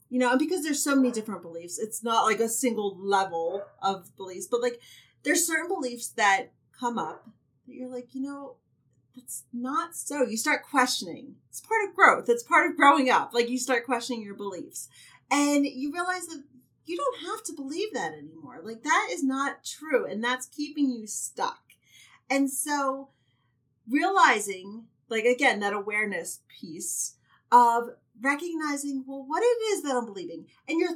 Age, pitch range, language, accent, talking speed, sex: 30-49, 200-290 Hz, English, American, 175 wpm, female